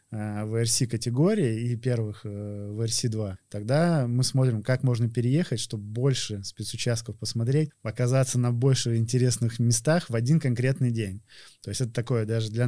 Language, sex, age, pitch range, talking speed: Russian, male, 20-39, 115-135 Hz, 140 wpm